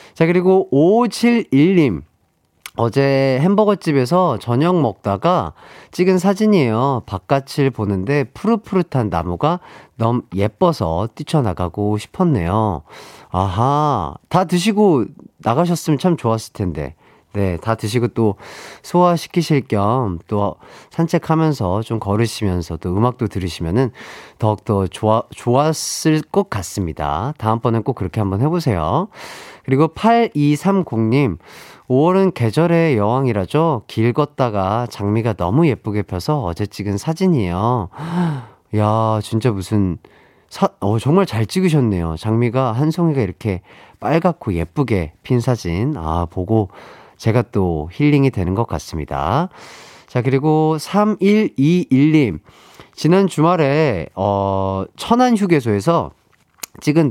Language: Korean